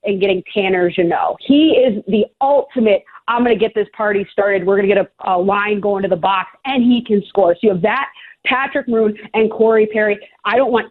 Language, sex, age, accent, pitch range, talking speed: English, female, 30-49, American, 195-245 Hz, 235 wpm